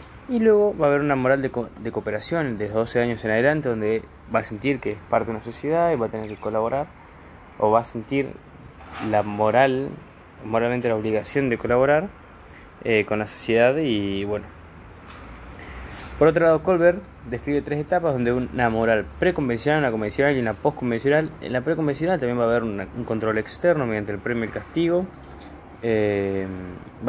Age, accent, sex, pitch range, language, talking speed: 20-39, Argentinian, male, 105-145 Hz, Spanish, 185 wpm